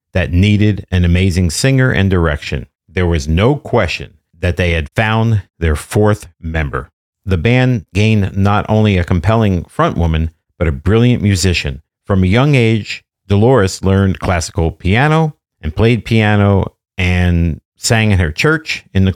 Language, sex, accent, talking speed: English, male, American, 155 wpm